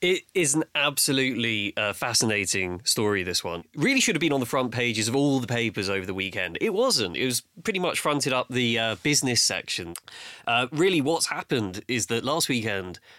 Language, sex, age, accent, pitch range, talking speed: English, male, 20-39, British, 100-130 Hz, 200 wpm